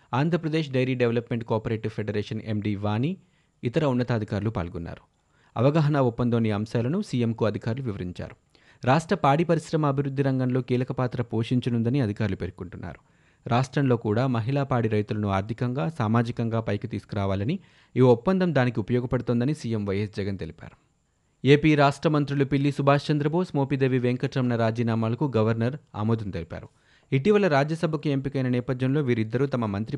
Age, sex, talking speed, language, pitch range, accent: 30-49, male, 125 wpm, Telugu, 110-140 Hz, native